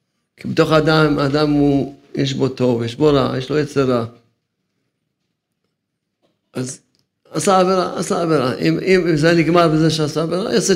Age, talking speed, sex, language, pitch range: 50-69, 155 wpm, male, Hebrew, 125-155 Hz